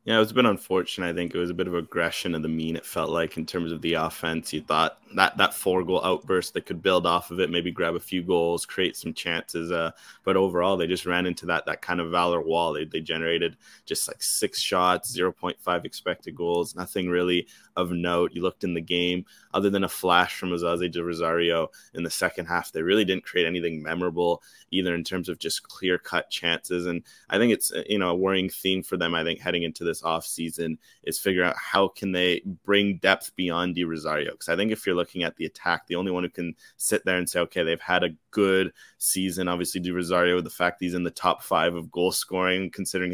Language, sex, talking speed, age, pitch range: English, male, 235 wpm, 20-39, 85-90 Hz